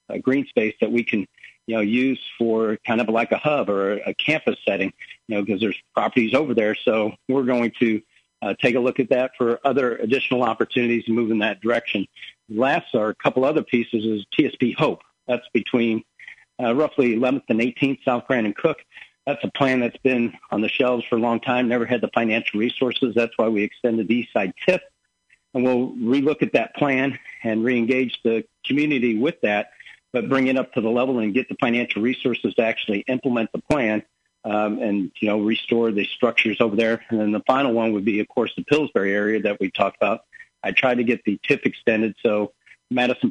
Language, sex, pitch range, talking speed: English, male, 110-130 Hz, 210 wpm